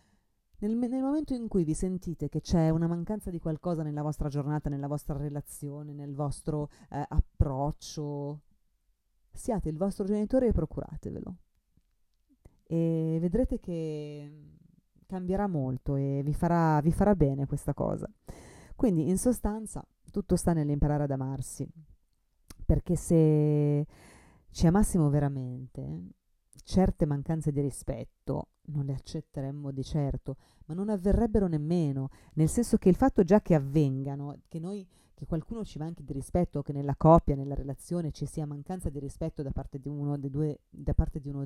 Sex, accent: female, native